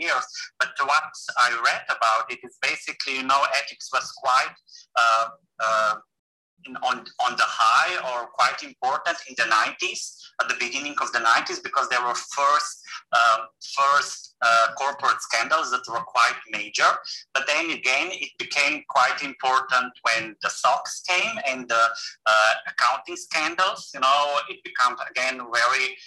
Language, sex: English, male